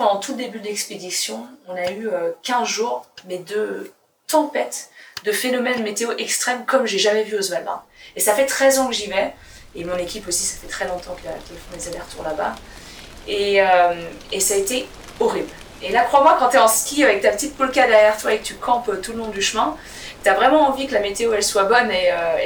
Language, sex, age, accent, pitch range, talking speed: French, female, 20-39, French, 190-250 Hz, 230 wpm